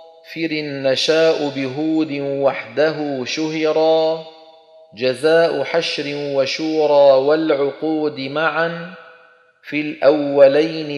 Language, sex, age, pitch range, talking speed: Arabic, male, 40-59, 145-165 Hz, 65 wpm